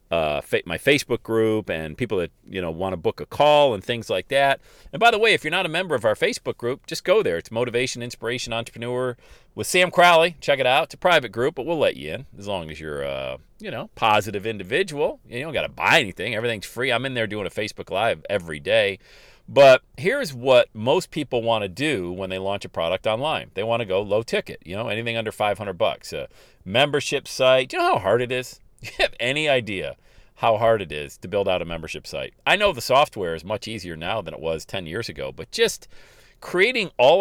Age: 40-59